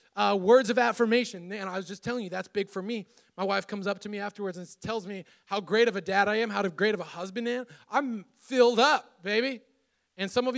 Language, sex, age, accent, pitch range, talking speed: English, male, 20-39, American, 195-235 Hz, 255 wpm